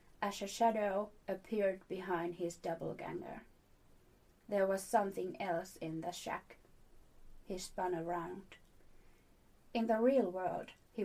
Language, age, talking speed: English, 30-49, 120 wpm